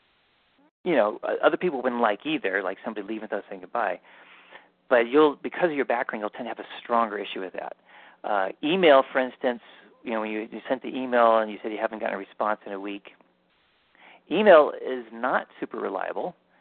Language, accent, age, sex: English, American, 40-59, male